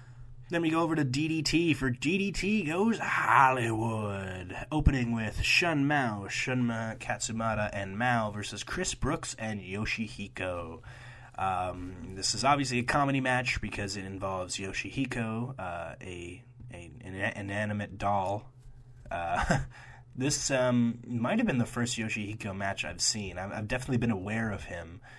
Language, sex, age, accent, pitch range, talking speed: English, male, 20-39, American, 100-125 Hz, 145 wpm